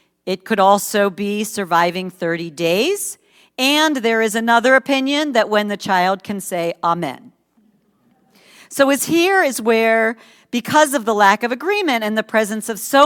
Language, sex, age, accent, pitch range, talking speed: English, female, 50-69, American, 190-245 Hz, 160 wpm